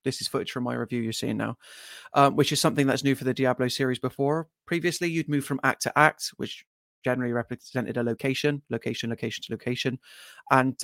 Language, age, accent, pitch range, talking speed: English, 30-49, British, 125-150 Hz, 205 wpm